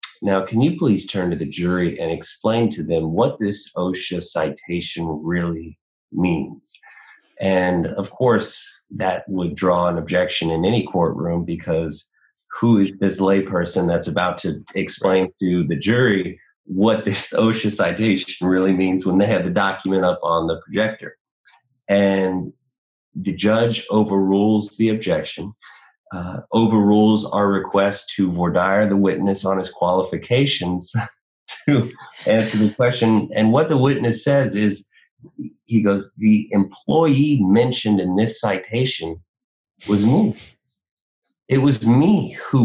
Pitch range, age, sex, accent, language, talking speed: 95-115 Hz, 30-49, male, American, English, 135 wpm